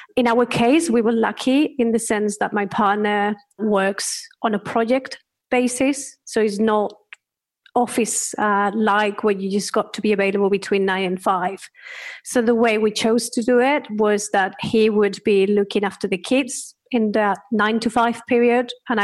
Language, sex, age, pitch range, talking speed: English, female, 30-49, 210-260 Hz, 185 wpm